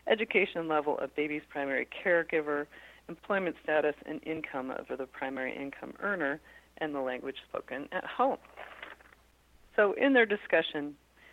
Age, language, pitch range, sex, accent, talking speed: 40-59, English, 145-180 Hz, female, American, 130 wpm